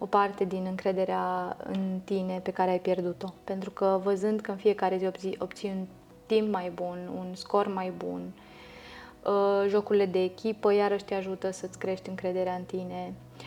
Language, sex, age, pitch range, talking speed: Romanian, female, 20-39, 185-205 Hz, 165 wpm